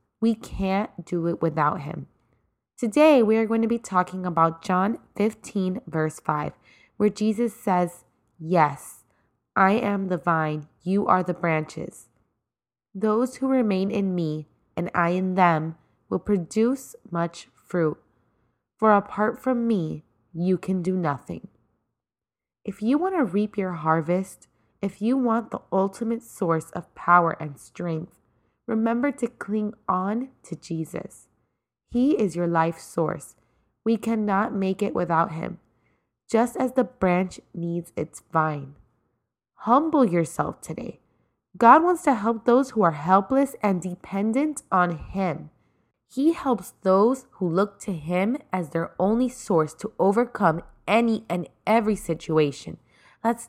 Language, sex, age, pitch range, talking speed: English, female, 20-39, 165-225 Hz, 140 wpm